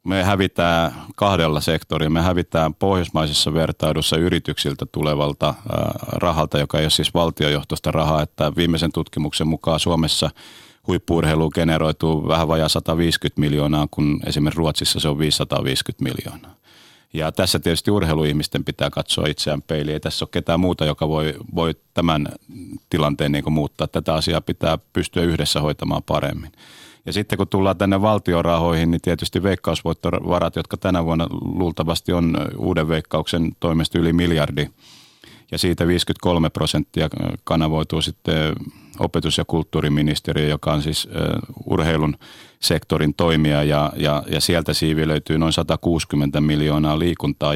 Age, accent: 30-49, native